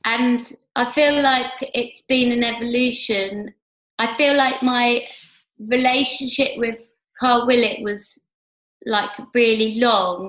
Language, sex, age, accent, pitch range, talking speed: English, female, 20-39, British, 215-255 Hz, 115 wpm